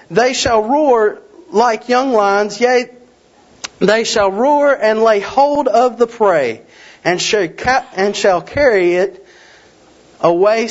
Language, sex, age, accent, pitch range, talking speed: English, male, 40-59, American, 180-240 Hz, 120 wpm